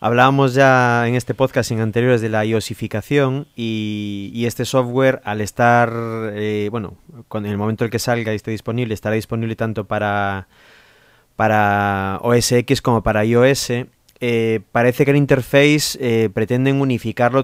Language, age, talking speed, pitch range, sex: English, 20-39, 155 wpm, 110-130 Hz, male